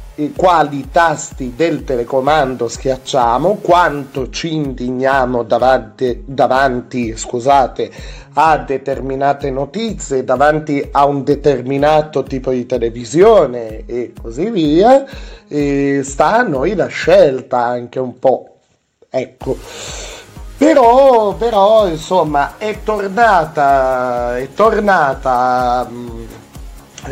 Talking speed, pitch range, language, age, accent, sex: 95 wpm, 130-180 Hz, Italian, 30-49, native, male